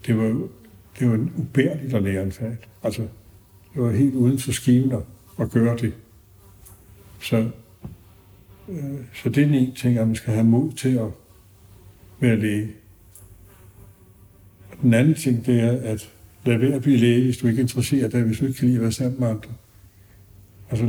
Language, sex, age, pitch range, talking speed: Danish, male, 60-79, 100-125 Hz, 170 wpm